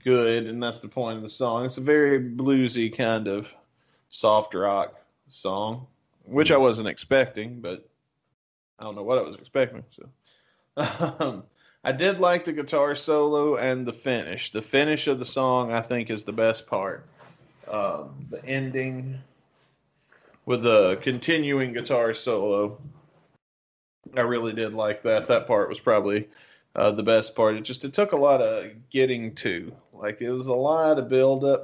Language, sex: English, male